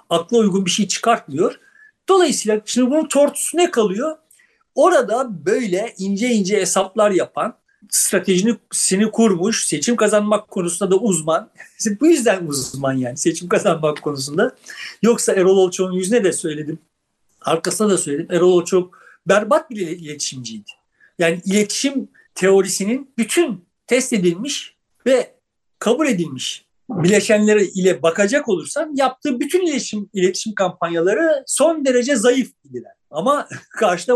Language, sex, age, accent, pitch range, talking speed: Turkish, male, 60-79, native, 180-255 Hz, 120 wpm